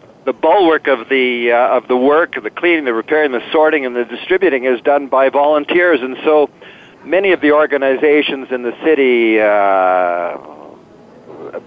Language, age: English, 50-69